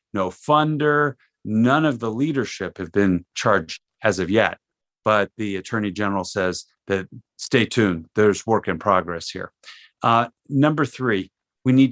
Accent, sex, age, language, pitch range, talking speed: American, male, 40-59, English, 100-125 Hz, 150 wpm